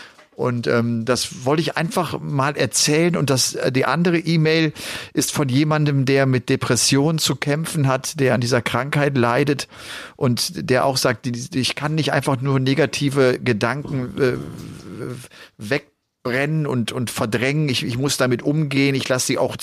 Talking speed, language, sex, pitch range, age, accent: 160 wpm, German, male, 120-150 Hz, 40-59, German